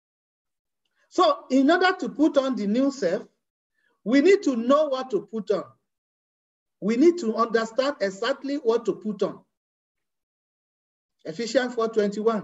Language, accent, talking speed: English, Nigerian, 130 wpm